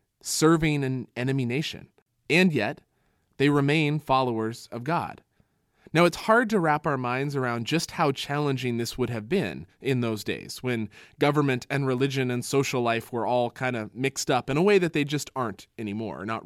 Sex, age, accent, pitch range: male, 20-39, American, 125-160 Hz